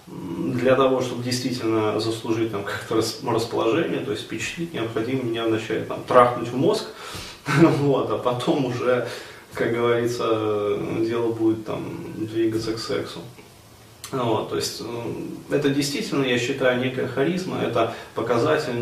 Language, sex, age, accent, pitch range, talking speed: Russian, male, 20-39, native, 115-135 Hz, 130 wpm